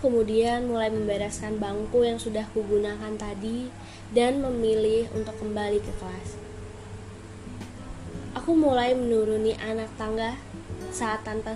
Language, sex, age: Indonesian, female, 20-39